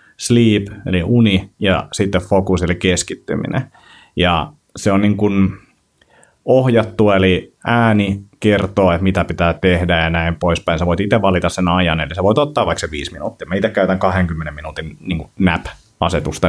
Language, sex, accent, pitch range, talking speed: Finnish, male, native, 90-105 Hz, 165 wpm